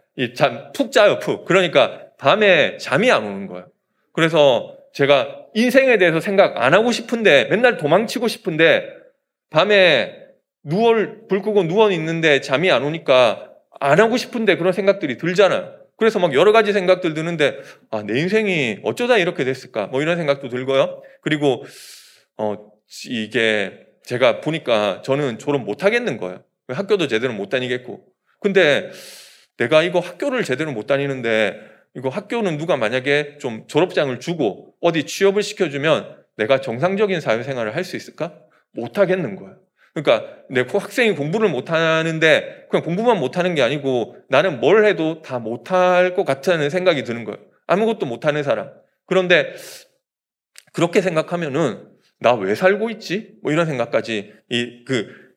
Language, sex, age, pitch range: Korean, male, 20-39, 140-210 Hz